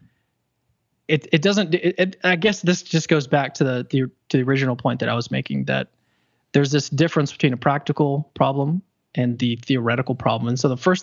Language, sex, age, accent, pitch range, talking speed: English, male, 20-39, American, 125-155 Hz, 205 wpm